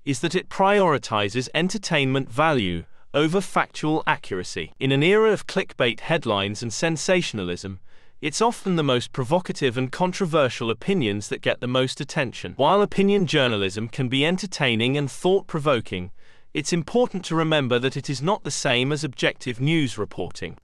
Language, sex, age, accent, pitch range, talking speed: English, male, 30-49, British, 125-175 Hz, 150 wpm